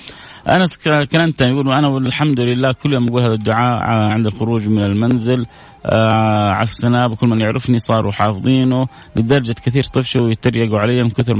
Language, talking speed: Arabic, 160 wpm